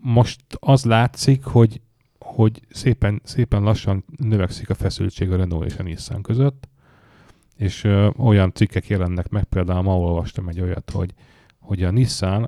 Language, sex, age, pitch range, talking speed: English, male, 30-49, 95-125 Hz, 155 wpm